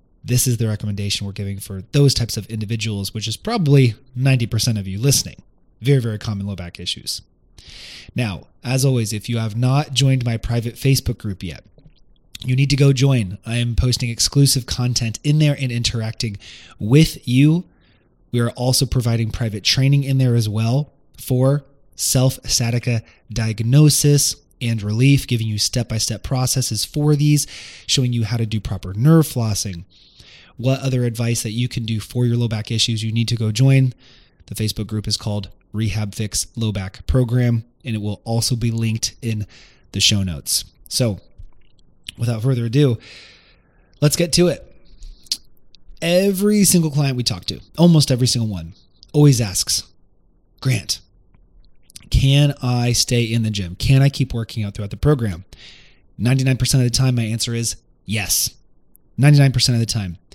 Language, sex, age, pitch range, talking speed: English, male, 20-39, 105-130 Hz, 165 wpm